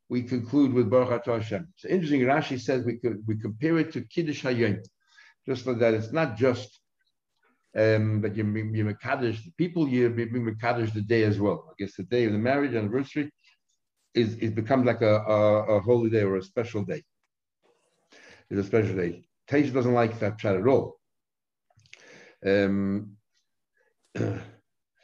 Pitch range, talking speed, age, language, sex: 110-135 Hz, 170 wpm, 60-79, English, male